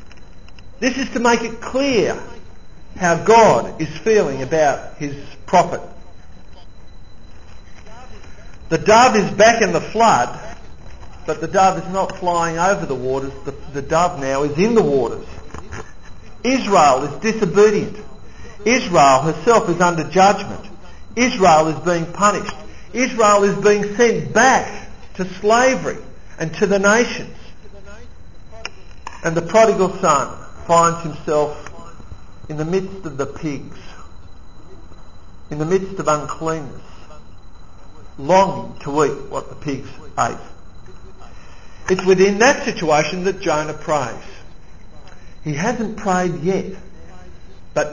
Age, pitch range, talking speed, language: 50-69, 135-200 Hz, 120 wpm, English